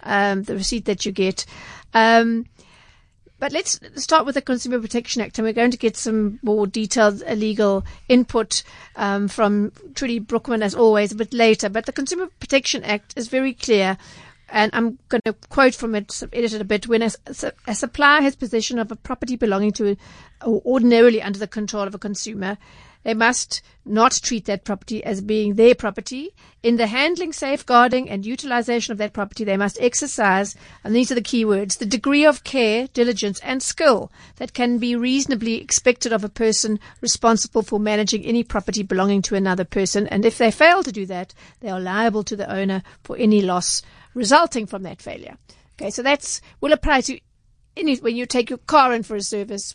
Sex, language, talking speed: female, English, 190 wpm